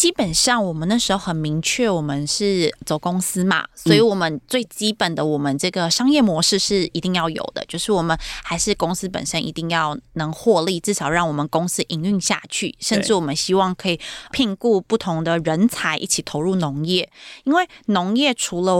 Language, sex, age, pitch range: Chinese, female, 20-39, 165-215 Hz